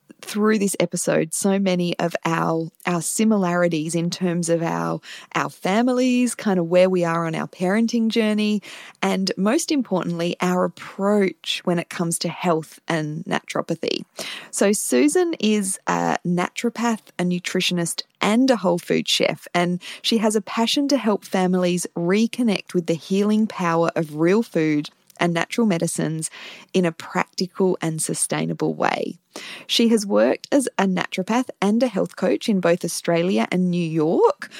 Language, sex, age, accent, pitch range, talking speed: English, female, 20-39, Australian, 170-210 Hz, 155 wpm